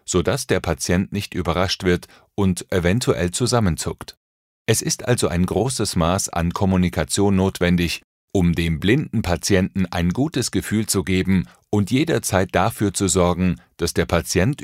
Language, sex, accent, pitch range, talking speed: German, male, German, 85-110 Hz, 145 wpm